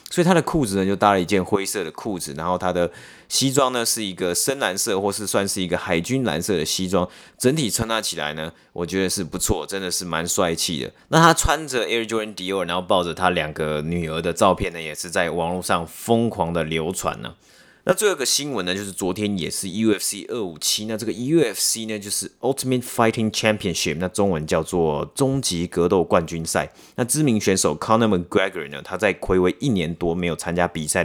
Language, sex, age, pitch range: Chinese, male, 30-49, 90-115 Hz